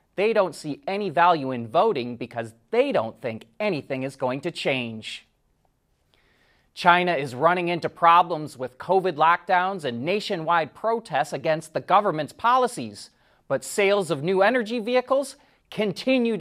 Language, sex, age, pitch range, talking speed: English, male, 30-49, 155-220 Hz, 140 wpm